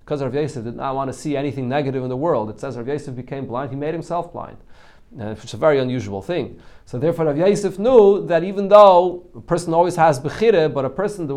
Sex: male